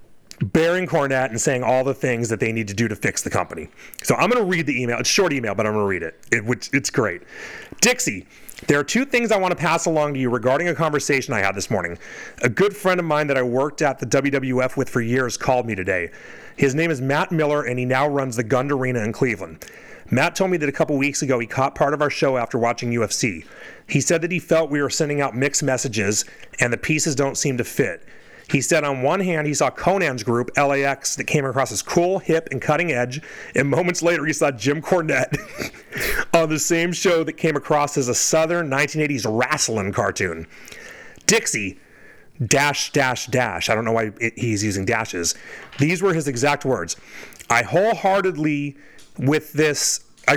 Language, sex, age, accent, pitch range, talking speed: English, male, 30-49, American, 125-160 Hz, 215 wpm